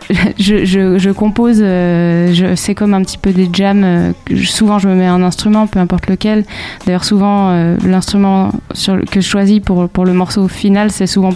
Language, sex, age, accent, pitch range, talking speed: French, female, 20-39, French, 180-210 Hz, 200 wpm